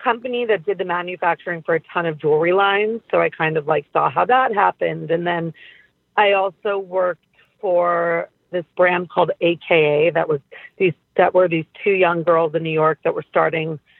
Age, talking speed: 40-59, 195 wpm